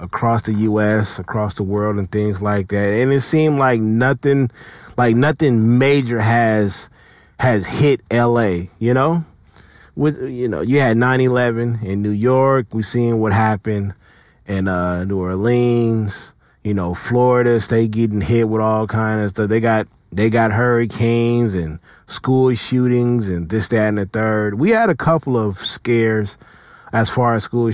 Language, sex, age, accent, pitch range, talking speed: English, male, 30-49, American, 105-125 Hz, 165 wpm